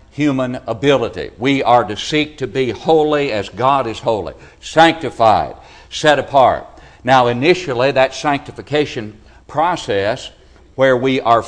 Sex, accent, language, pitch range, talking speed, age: male, American, English, 125-155 Hz, 125 wpm, 60-79